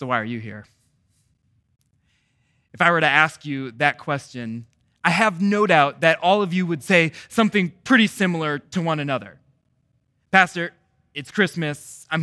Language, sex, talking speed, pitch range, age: English, male, 160 wpm, 135-195 Hz, 20-39